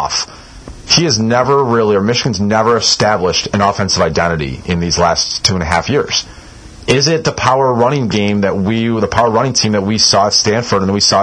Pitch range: 110-135 Hz